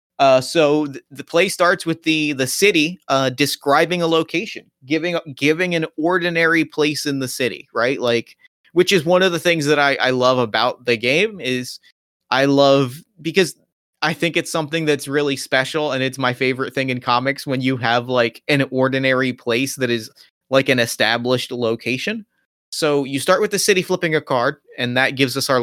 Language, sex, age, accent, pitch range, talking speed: English, male, 30-49, American, 135-170 Hz, 190 wpm